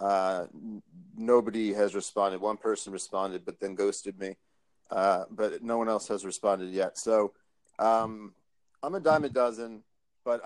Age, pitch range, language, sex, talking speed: 40-59, 100-120 Hz, English, male, 160 wpm